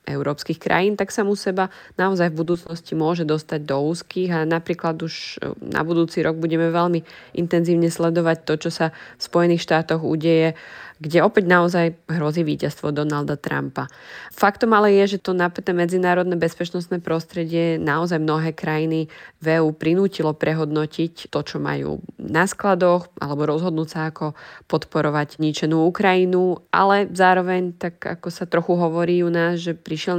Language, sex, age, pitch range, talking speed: Slovak, female, 20-39, 155-175 Hz, 150 wpm